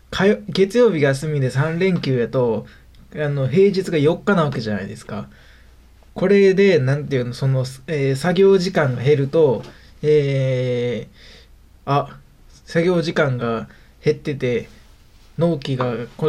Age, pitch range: 20-39, 125-175 Hz